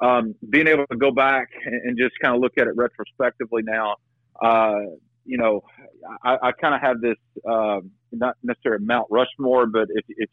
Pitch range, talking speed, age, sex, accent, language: 105-120 Hz, 185 wpm, 40-59, male, American, English